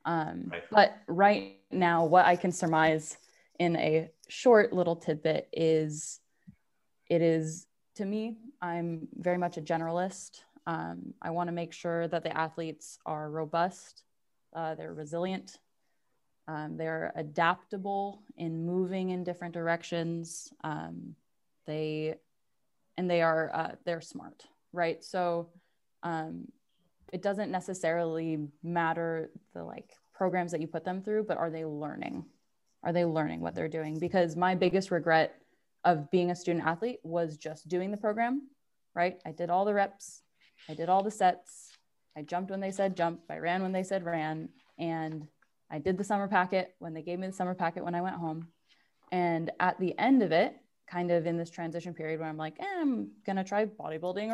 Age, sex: 20-39, female